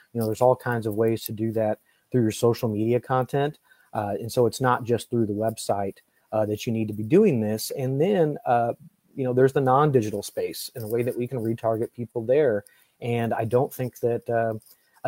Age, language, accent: 30-49, English, American